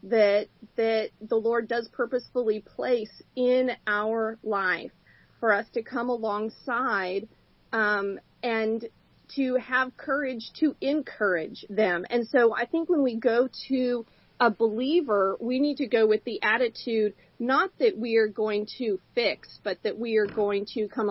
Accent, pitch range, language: American, 215-270 Hz, English